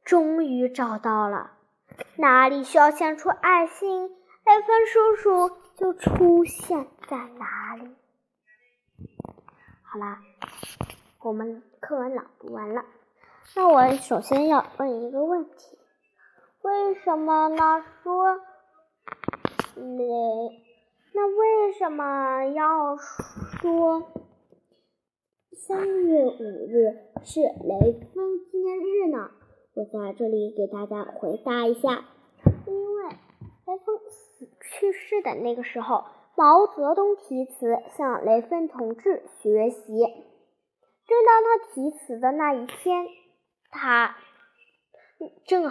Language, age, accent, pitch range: Chinese, 10-29, native, 240-365 Hz